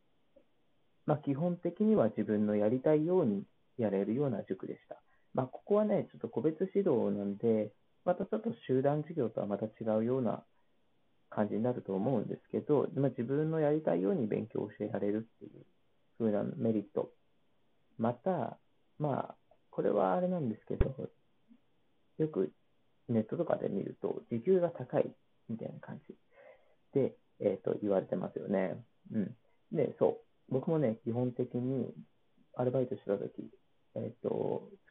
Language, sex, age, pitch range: Japanese, male, 40-59, 110-155 Hz